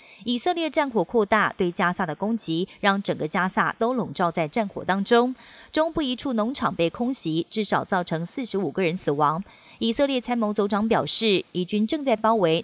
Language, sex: Chinese, female